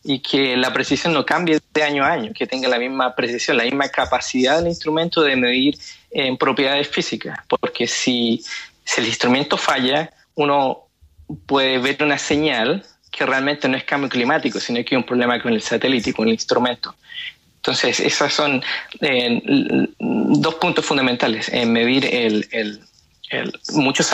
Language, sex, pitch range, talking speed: Spanish, male, 130-170 Hz, 160 wpm